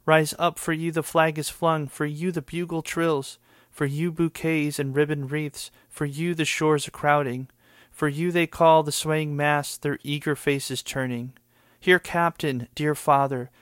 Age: 30-49